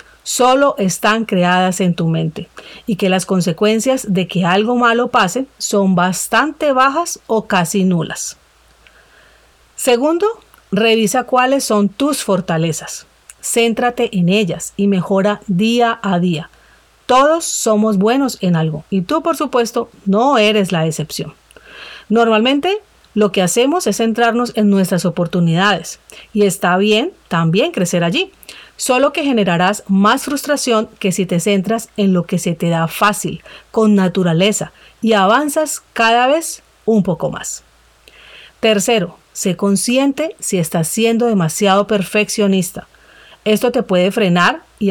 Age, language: 40-59, Spanish